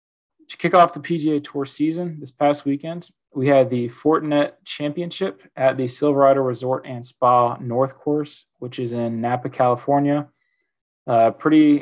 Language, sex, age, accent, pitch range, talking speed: English, male, 20-39, American, 120-140 Hz, 155 wpm